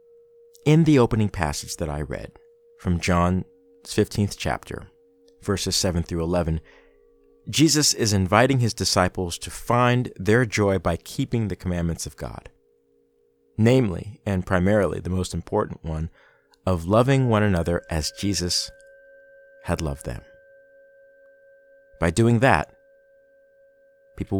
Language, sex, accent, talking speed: English, male, American, 125 wpm